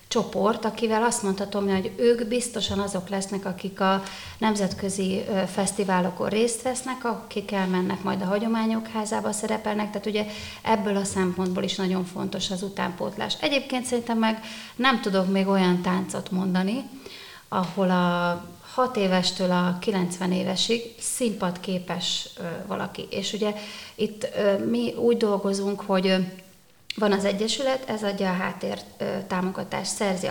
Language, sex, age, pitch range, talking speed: Hungarian, female, 30-49, 185-225 Hz, 130 wpm